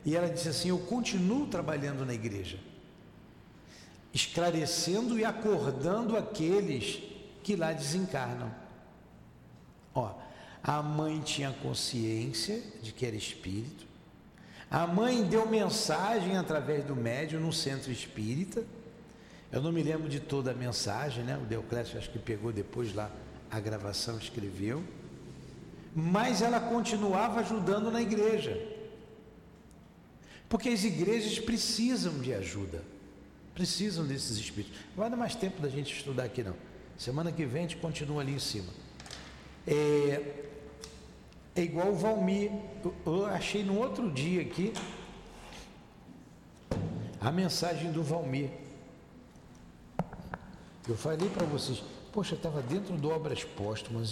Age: 60-79